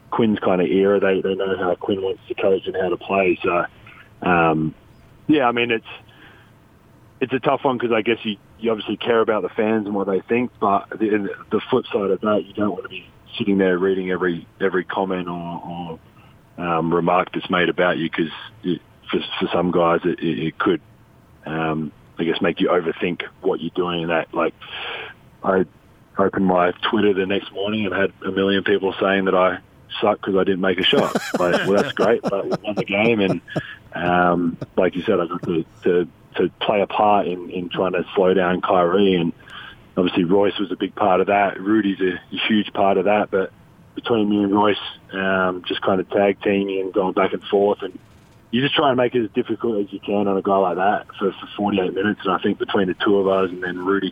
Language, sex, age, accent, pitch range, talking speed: English, male, 20-39, Australian, 90-110 Hz, 225 wpm